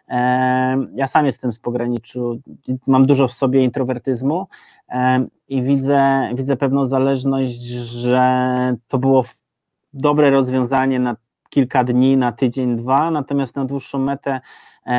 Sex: male